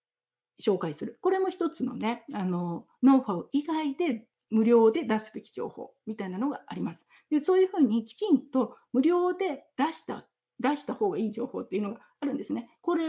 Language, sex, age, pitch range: Japanese, female, 50-69, 215-285 Hz